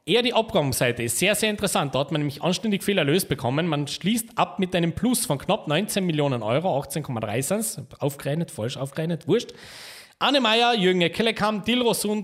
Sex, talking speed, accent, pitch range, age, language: male, 180 wpm, Austrian, 150-220 Hz, 40-59, German